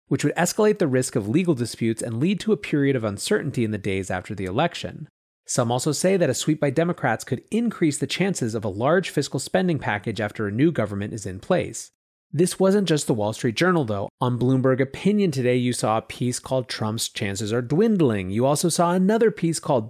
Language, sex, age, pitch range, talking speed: English, male, 30-49, 110-155 Hz, 220 wpm